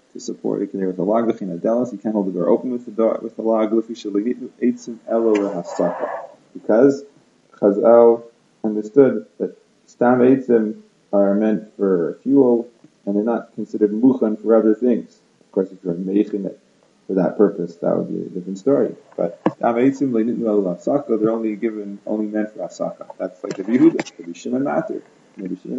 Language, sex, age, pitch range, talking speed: English, male, 30-49, 105-125 Hz, 165 wpm